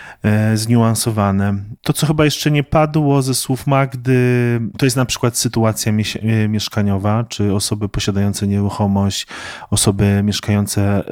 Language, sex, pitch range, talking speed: Polish, male, 105-125 Hz, 120 wpm